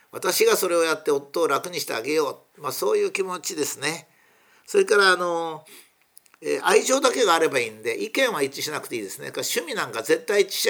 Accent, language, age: native, Japanese, 50-69